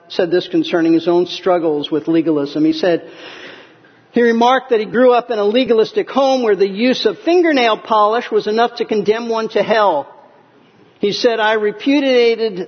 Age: 50-69